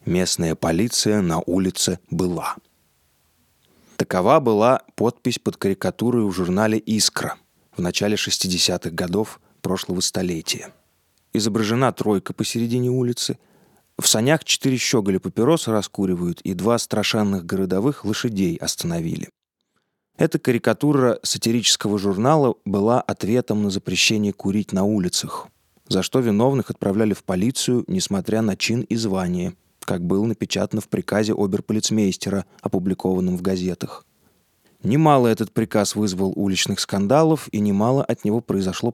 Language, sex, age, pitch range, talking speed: Russian, male, 30-49, 95-120 Hz, 120 wpm